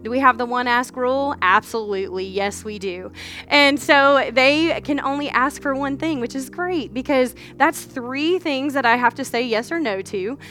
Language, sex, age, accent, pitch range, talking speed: English, female, 20-39, American, 240-310 Hz, 205 wpm